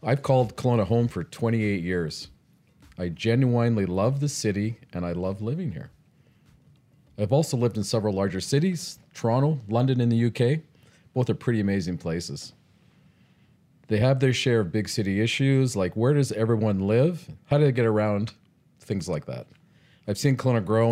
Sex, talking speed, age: male, 170 wpm, 40-59